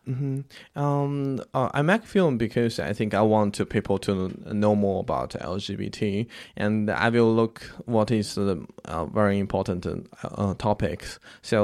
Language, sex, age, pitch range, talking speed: English, male, 10-29, 100-115 Hz, 175 wpm